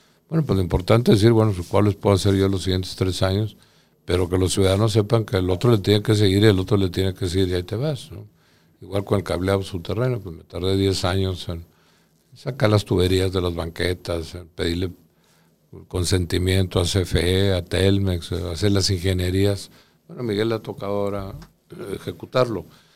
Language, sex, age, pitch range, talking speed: Spanish, male, 50-69, 90-110 Hz, 190 wpm